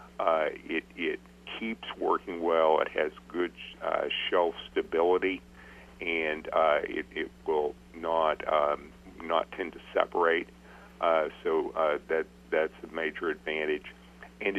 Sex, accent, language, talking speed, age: male, American, English, 135 wpm, 50-69